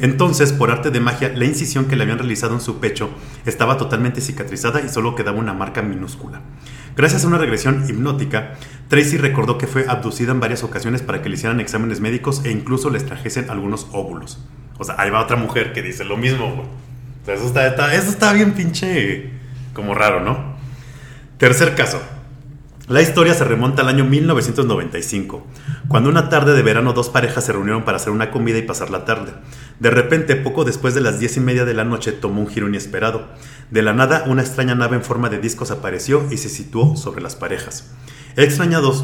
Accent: Mexican